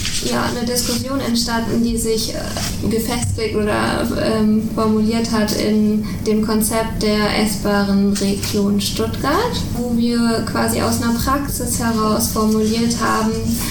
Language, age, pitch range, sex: German, 10-29, 205-220 Hz, female